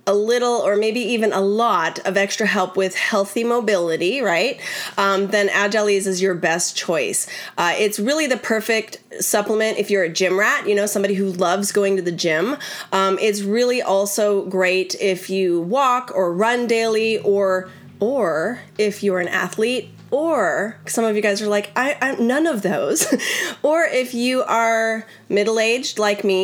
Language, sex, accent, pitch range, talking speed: English, female, American, 195-240 Hz, 175 wpm